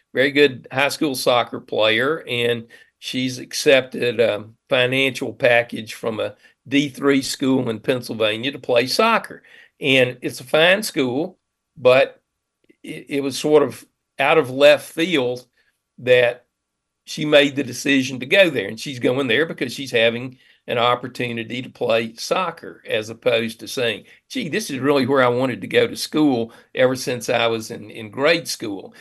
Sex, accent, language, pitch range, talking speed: male, American, English, 120-145 Hz, 160 wpm